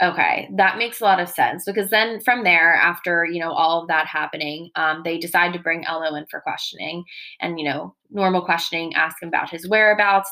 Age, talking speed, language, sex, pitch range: 20-39, 215 wpm, English, female, 160-185 Hz